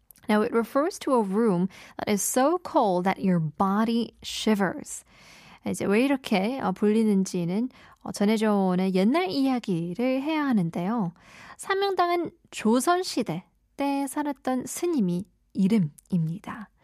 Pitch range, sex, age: 190-265 Hz, female, 10-29